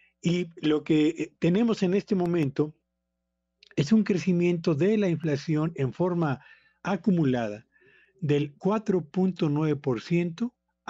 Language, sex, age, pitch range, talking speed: Spanish, male, 50-69, 140-180 Hz, 100 wpm